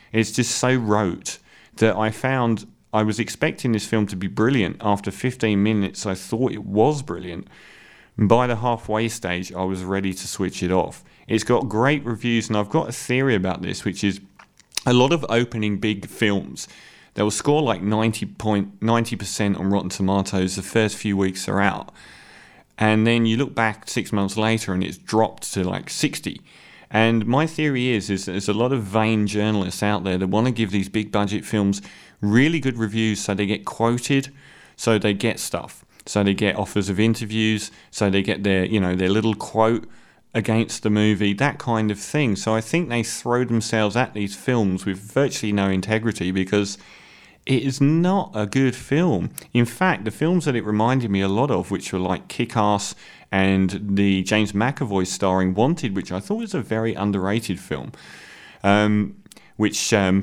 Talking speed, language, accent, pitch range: 190 wpm, English, British, 100-115 Hz